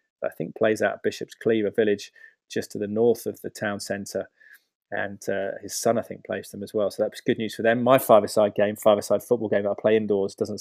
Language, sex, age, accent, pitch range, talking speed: English, male, 20-39, British, 100-115 Hz, 250 wpm